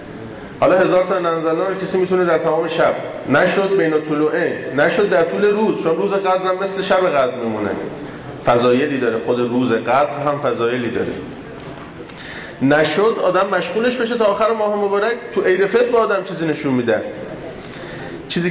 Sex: male